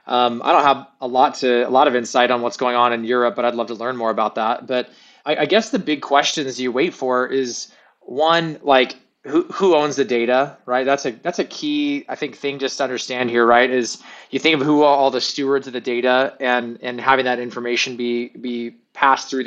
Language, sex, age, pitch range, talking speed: English, male, 20-39, 125-145 Hz, 240 wpm